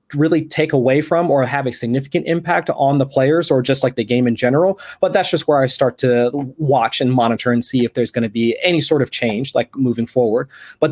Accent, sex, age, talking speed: American, male, 30-49, 240 wpm